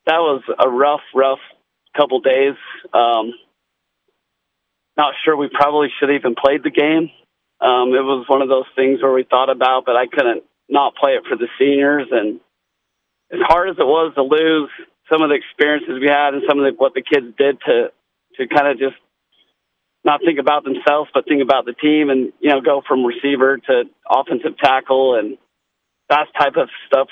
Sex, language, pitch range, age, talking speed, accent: male, English, 135-150 Hz, 40-59, 195 wpm, American